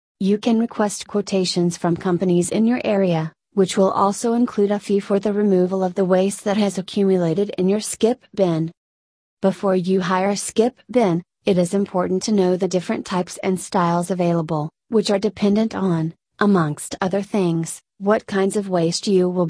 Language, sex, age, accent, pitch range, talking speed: English, female, 30-49, American, 170-200 Hz, 180 wpm